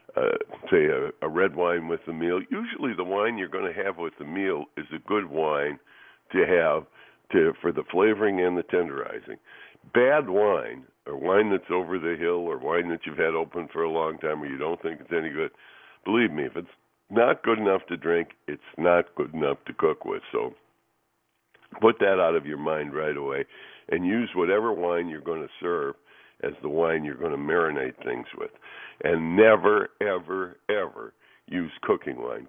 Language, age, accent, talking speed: English, 60-79, American, 195 wpm